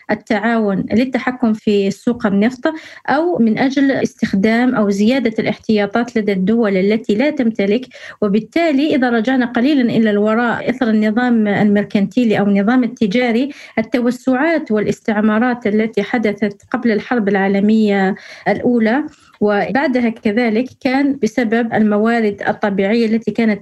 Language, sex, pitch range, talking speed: Arabic, female, 210-255 Hz, 115 wpm